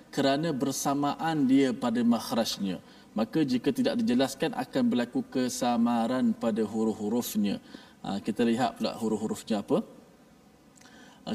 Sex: male